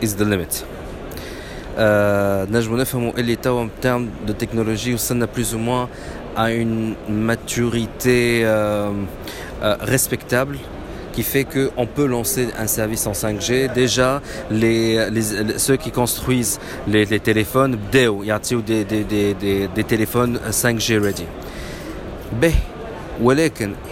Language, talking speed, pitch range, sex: Arabic, 115 wpm, 105-130 Hz, male